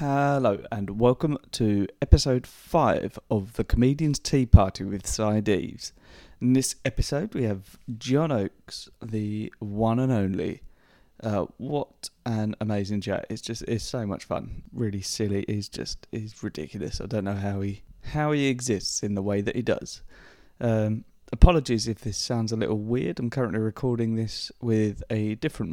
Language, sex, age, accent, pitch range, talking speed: English, male, 30-49, British, 105-125 Hz, 160 wpm